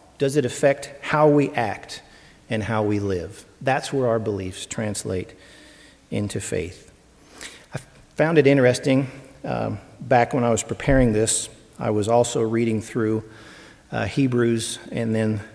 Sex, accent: male, American